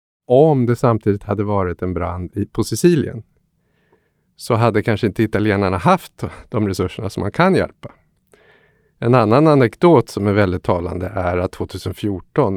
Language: Swedish